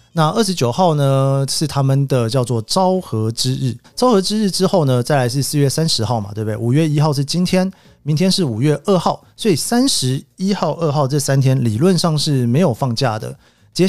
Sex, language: male, Chinese